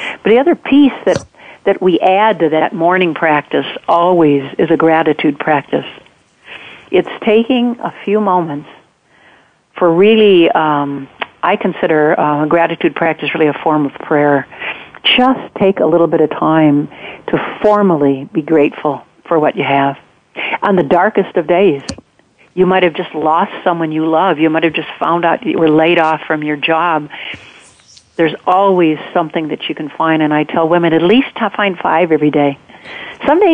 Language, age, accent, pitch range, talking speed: English, 60-79, American, 155-195 Hz, 170 wpm